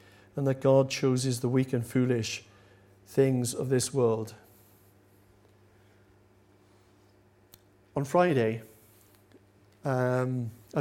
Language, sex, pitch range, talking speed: English, male, 105-135 Hz, 90 wpm